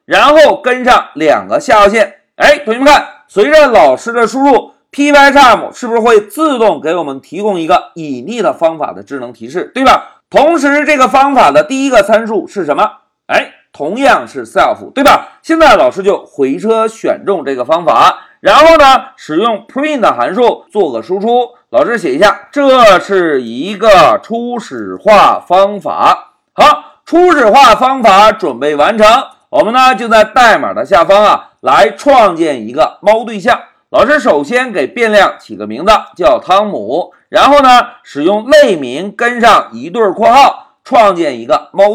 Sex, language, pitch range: male, Chinese, 210-300 Hz